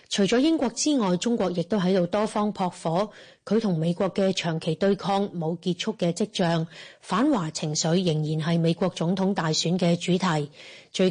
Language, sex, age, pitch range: Chinese, female, 30-49, 170-215 Hz